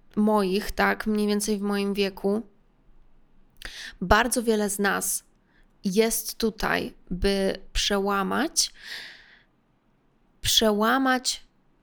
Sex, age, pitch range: female, 20-39, 200-225 Hz